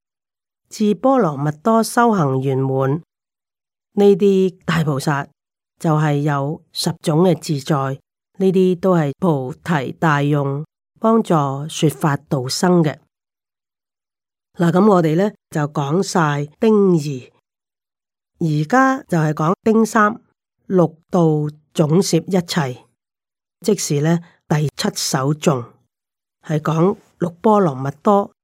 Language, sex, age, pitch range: Chinese, female, 30-49, 150-190 Hz